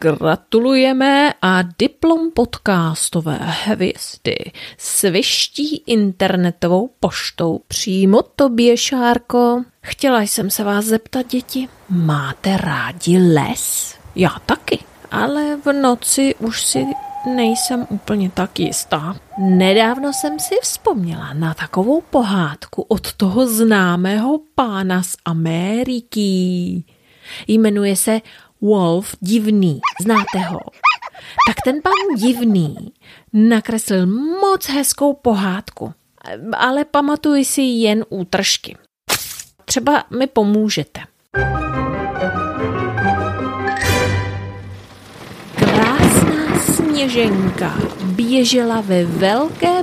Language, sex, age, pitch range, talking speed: Czech, female, 30-49, 185-260 Hz, 85 wpm